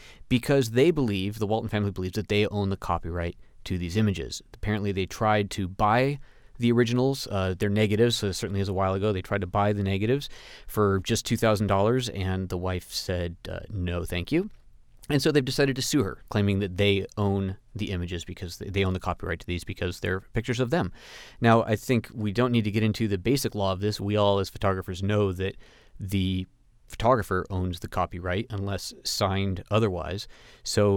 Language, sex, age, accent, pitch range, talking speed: English, male, 30-49, American, 95-115 Hz, 200 wpm